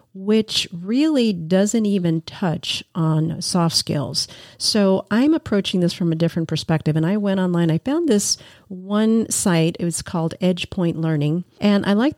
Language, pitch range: English, 165-195 Hz